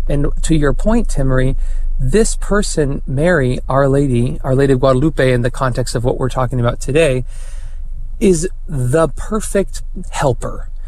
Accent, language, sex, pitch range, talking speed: American, English, male, 125-160 Hz, 150 wpm